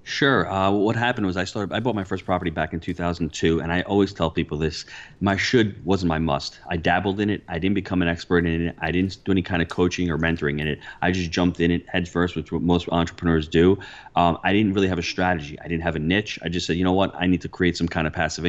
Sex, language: male, English